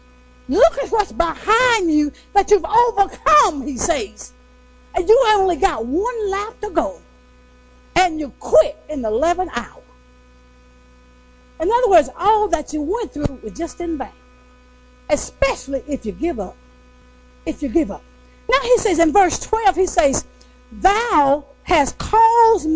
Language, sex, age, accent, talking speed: English, female, 50-69, American, 150 wpm